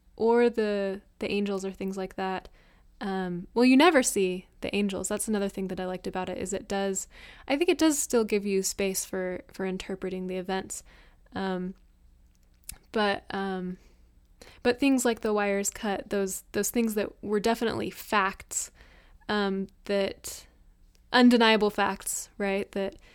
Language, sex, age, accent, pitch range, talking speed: English, female, 10-29, American, 190-210 Hz, 160 wpm